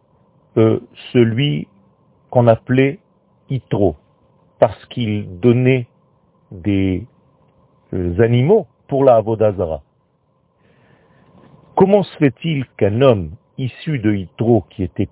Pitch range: 110-165 Hz